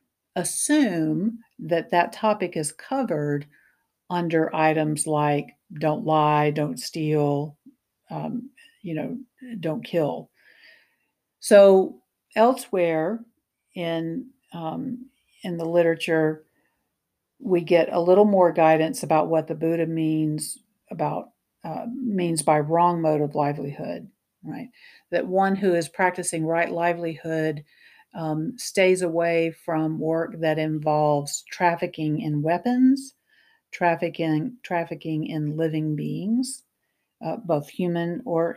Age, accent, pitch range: 50-69, American, 160-220 Hz